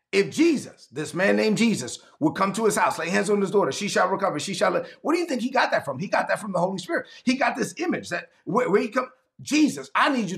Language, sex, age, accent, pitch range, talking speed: English, male, 30-49, American, 185-255 Hz, 290 wpm